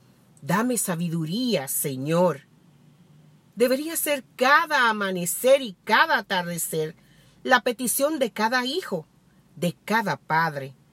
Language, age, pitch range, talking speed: Spanish, 50-69, 165-230 Hz, 100 wpm